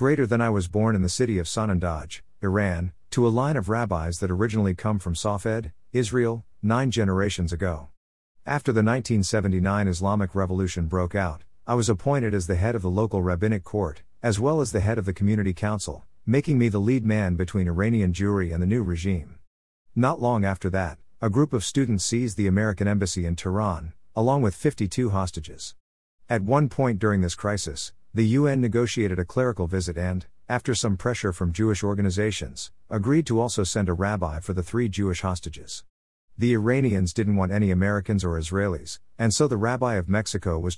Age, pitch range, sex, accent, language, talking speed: 50-69, 90-115 Hz, male, American, English, 185 wpm